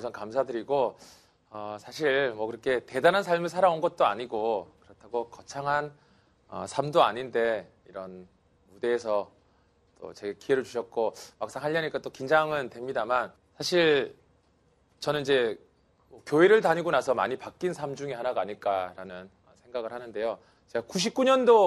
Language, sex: Korean, male